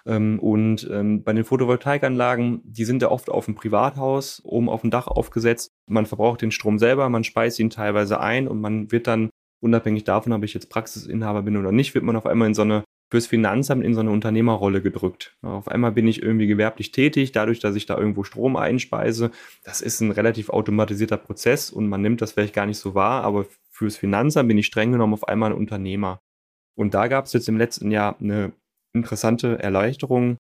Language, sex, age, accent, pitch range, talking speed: German, male, 30-49, German, 105-120 Hz, 205 wpm